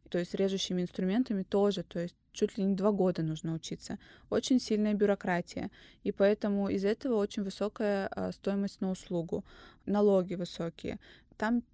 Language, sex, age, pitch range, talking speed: Russian, female, 20-39, 185-220 Hz, 150 wpm